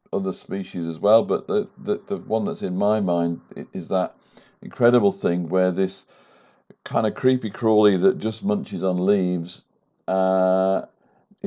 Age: 50-69